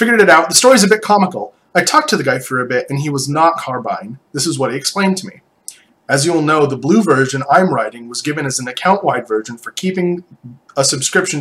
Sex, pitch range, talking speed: male, 125-170 Hz, 240 wpm